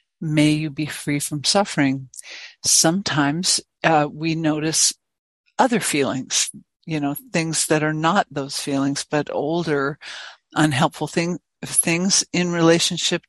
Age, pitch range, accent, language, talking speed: 60-79, 150-175 Hz, American, English, 115 wpm